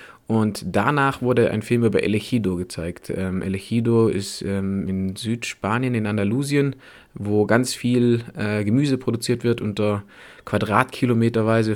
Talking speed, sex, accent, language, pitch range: 130 wpm, male, German, German, 100-120 Hz